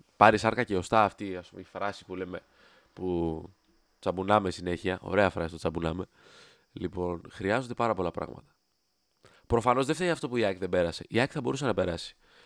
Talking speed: 185 wpm